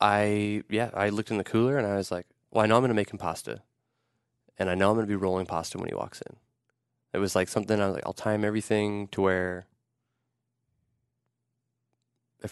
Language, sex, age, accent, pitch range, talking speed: English, male, 20-39, American, 95-120 Hz, 220 wpm